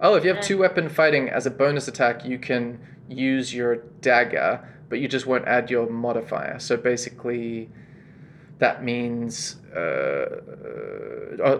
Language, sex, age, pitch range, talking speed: English, male, 20-39, 120-155 Hz, 145 wpm